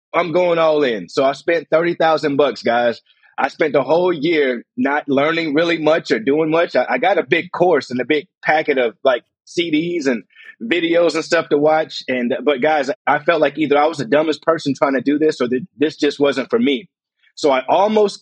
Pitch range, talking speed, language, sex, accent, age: 140-170 Hz, 220 wpm, English, male, American, 30-49